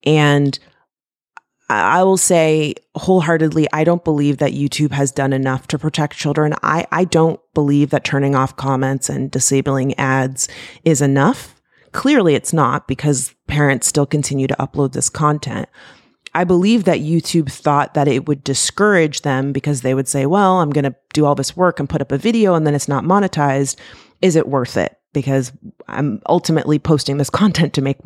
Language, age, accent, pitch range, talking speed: English, 30-49, American, 140-165 Hz, 175 wpm